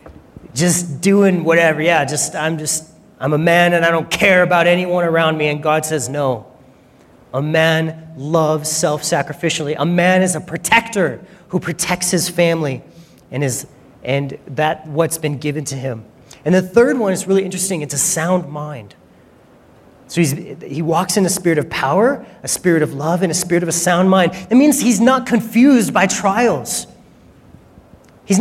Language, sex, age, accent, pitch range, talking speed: English, male, 30-49, American, 155-190 Hz, 175 wpm